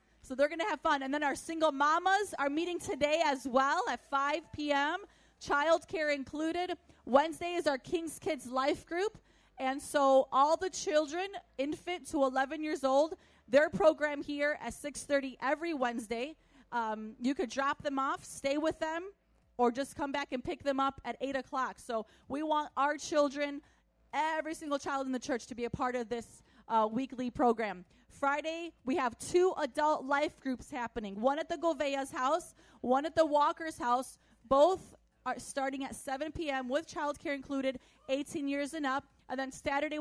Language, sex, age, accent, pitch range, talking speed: English, female, 30-49, American, 265-315 Hz, 180 wpm